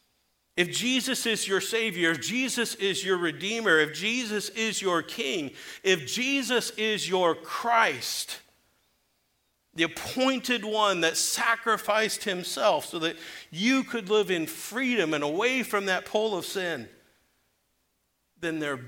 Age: 50-69